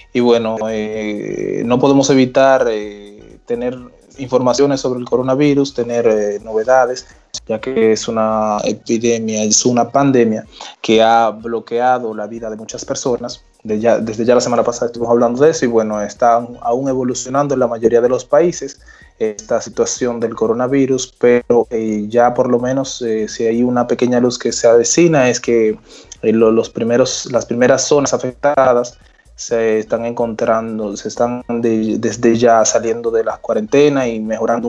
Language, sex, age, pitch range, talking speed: Spanish, male, 20-39, 110-130 Hz, 165 wpm